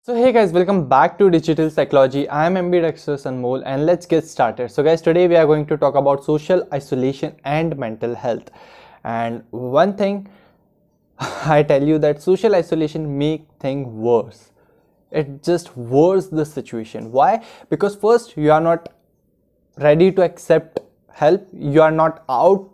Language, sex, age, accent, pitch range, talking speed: Hindi, male, 20-39, native, 140-175 Hz, 165 wpm